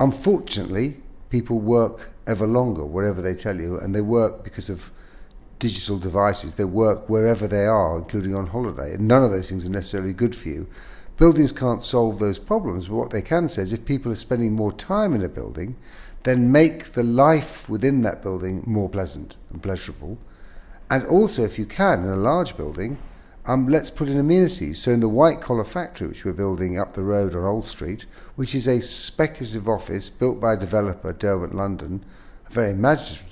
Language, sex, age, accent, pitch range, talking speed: English, male, 50-69, British, 95-120 Hz, 195 wpm